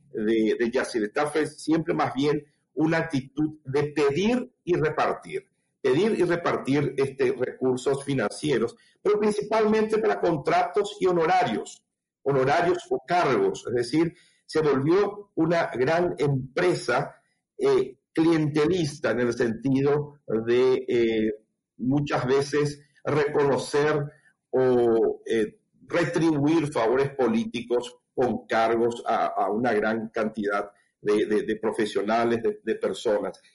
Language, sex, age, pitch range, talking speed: Spanish, male, 50-69, 120-180 Hz, 110 wpm